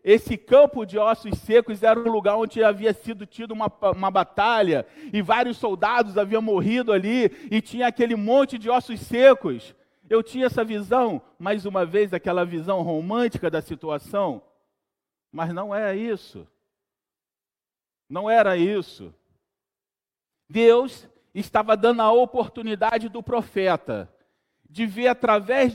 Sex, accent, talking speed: male, Brazilian, 135 wpm